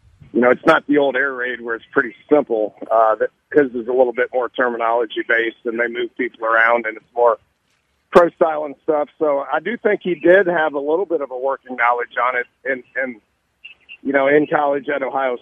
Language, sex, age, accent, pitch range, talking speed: English, male, 50-69, American, 125-150 Hz, 220 wpm